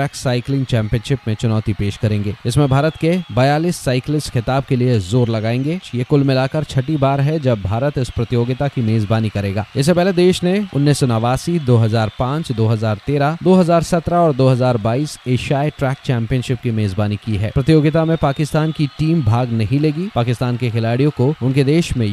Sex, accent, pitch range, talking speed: male, native, 120-150 Hz, 170 wpm